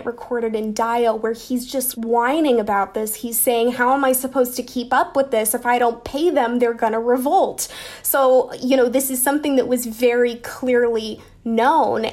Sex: female